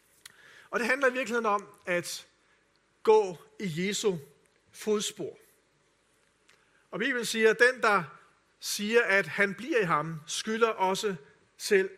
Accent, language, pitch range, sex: native, Danish, 170-230 Hz, male